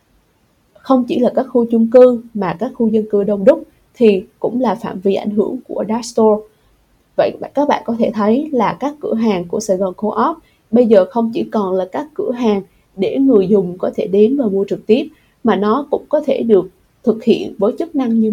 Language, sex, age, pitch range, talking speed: Vietnamese, female, 20-39, 205-255 Hz, 225 wpm